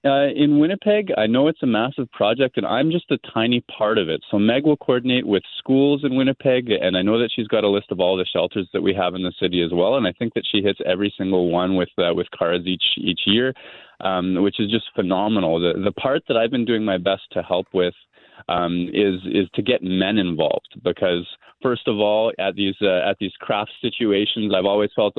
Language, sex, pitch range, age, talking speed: English, male, 95-120 Hz, 20-39, 235 wpm